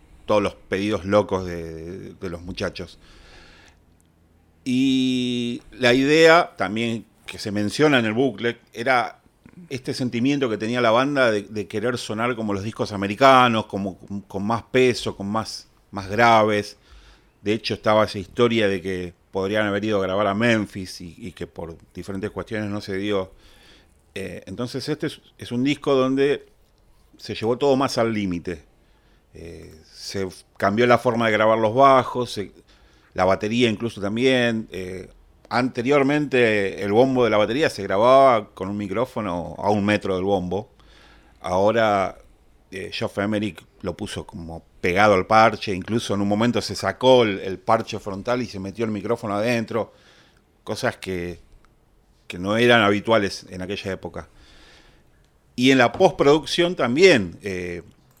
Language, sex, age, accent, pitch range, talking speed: Spanish, male, 40-59, Argentinian, 95-120 Hz, 155 wpm